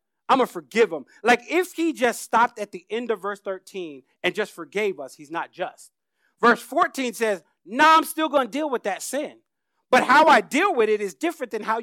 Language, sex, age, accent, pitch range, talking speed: English, male, 30-49, American, 190-265 Hz, 235 wpm